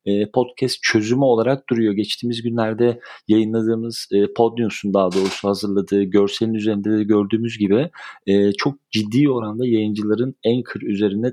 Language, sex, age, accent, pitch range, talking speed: Turkish, male, 40-59, native, 105-120 Hz, 130 wpm